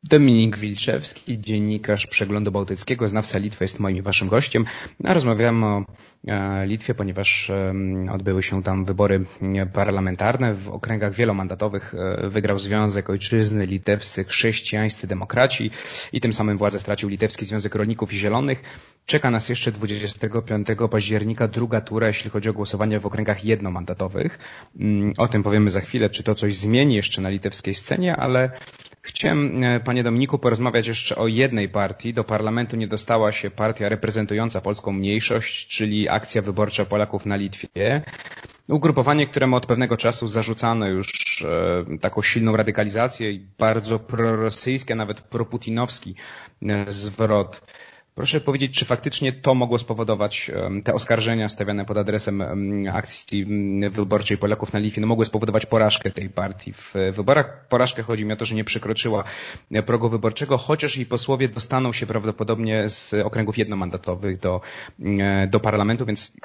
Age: 30-49